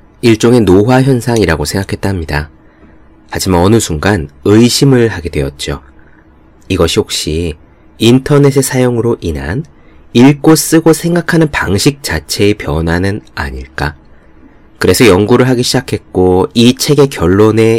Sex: male